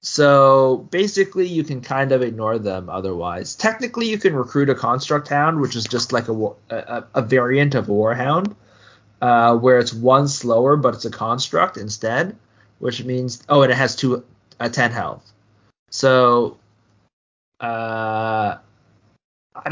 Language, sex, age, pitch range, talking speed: English, male, 20-39, 110-145 Hz, 150 wpm